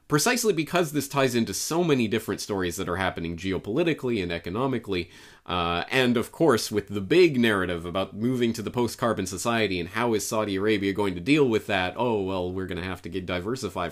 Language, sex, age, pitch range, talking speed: English, male, 30-49, 95-125 Hz, 205 wpm